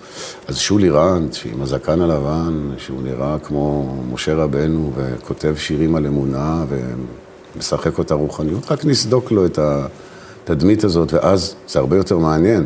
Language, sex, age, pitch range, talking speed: Hebrew, male, 50-69, 75-95 Hz, 135 wpm